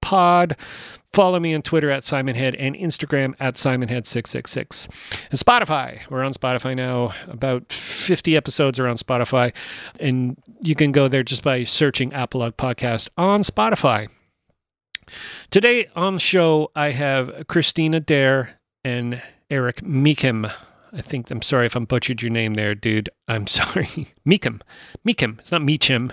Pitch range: 125-160 Hz